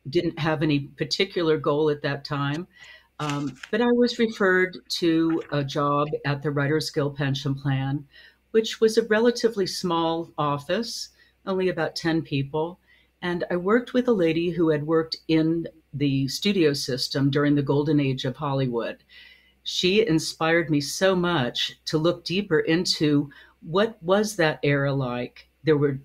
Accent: American